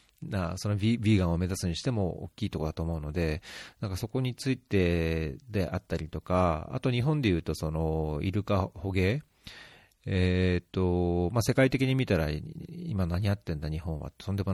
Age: 40-59